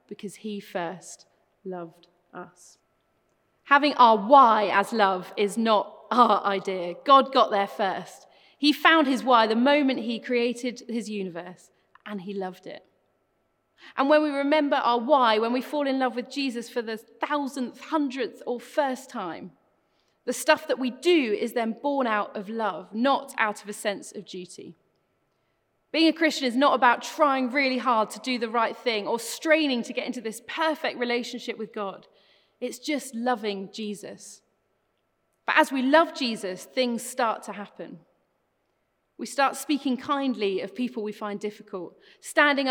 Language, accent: English, British